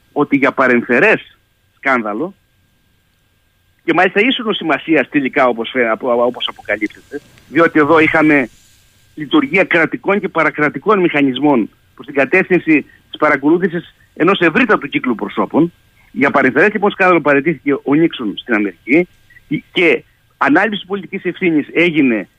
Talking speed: 115 wpm